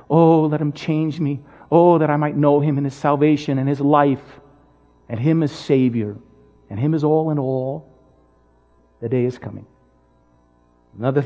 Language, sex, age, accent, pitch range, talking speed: English, male, 50-69, American, 125-160 Hz, 170 wpm